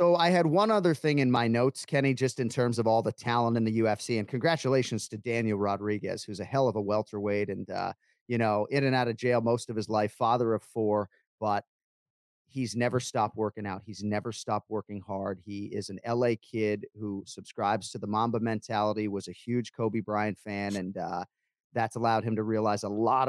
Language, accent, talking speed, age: English, American, 215 wpm, 30-49